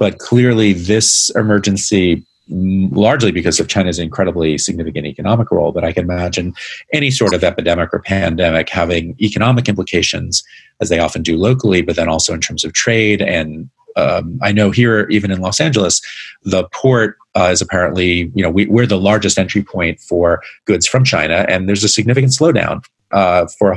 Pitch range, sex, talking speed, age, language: 90-115 Hz, male, 175 wpm, 40-59, English